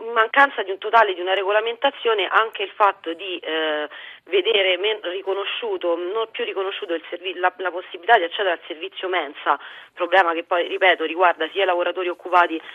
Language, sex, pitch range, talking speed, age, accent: Italian, female, 170-215 Hz, 180 wpm, 30-49, native